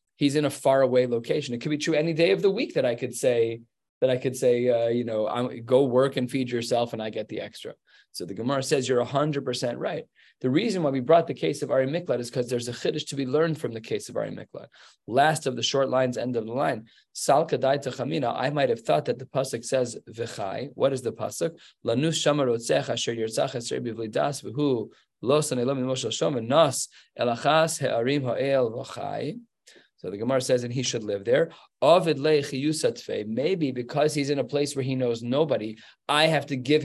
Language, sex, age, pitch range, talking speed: English, male, 20-39, 120-150 Hz, 180 wpm